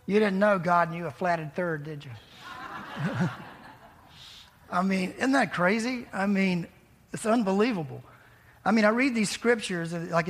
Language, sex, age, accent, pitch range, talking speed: English, male, 50-69, American, 170-195 Hz, 150 wpm